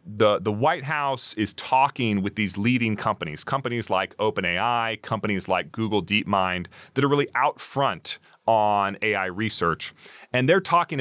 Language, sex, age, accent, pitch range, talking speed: English, male, 30-49, American, 100-135 Hz, 155 wpm